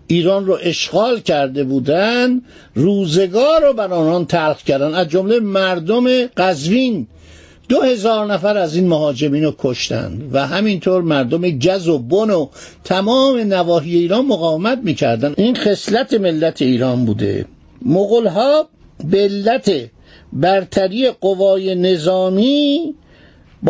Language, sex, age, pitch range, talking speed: Persian, male, 60-79, 165-225 Hz, 115 wpm